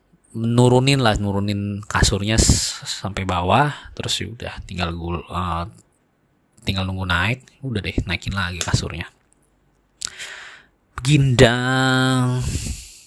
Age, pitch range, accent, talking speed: 20-39, 95-115 Hz, native, 100 wpm